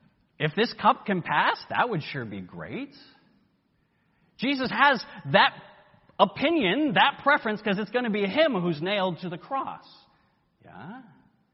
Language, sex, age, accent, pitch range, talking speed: English, male, 30-49, American, 165-230 Hz, 145 wpm